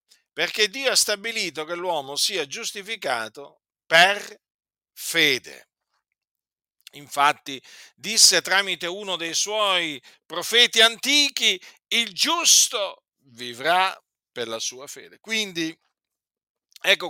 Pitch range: 150-220 Hz